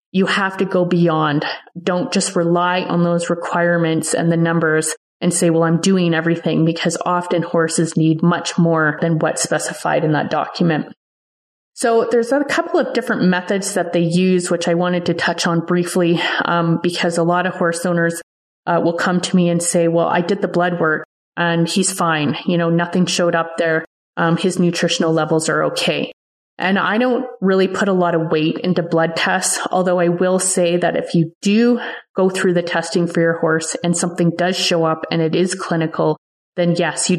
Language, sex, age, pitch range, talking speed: English, female, 30-49, 165-185 Hz, 200 wpm